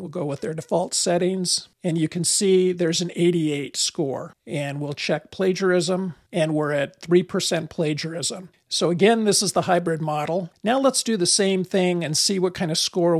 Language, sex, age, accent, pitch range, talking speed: English, male, 50-69, American, 160-190 Hz, 190 wpm